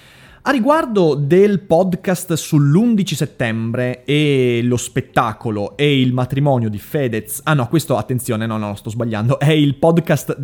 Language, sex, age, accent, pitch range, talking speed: Italian, male, 30-49, native, 130-185 Hz, 145 wpm